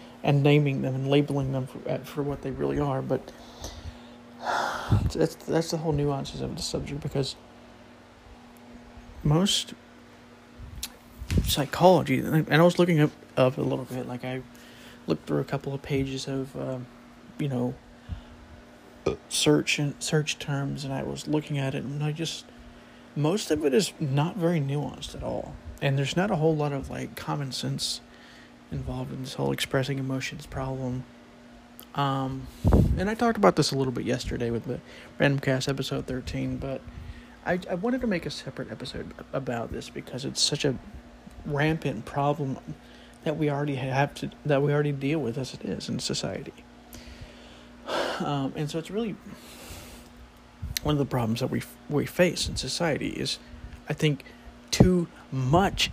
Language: English